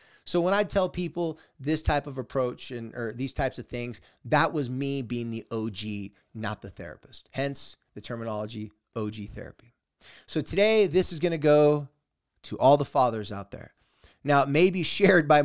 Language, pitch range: English, 115-150 Hz